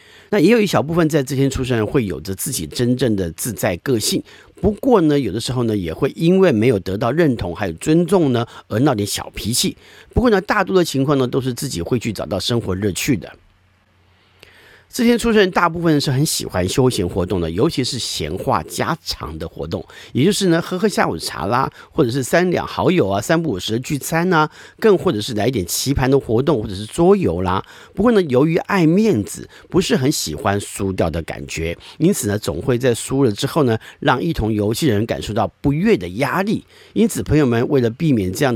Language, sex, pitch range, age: Chinese, male, 100-155 Hz, 50-69